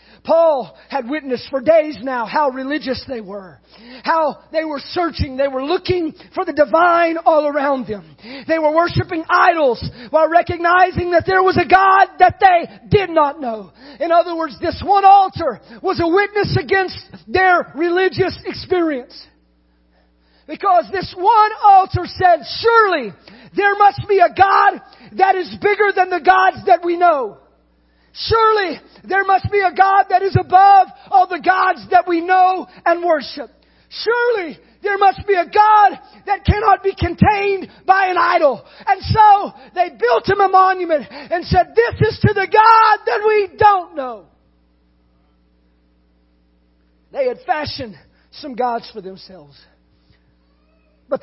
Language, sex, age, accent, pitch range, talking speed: English, male, 40-59, American, 255-370 Hz, 150 wpm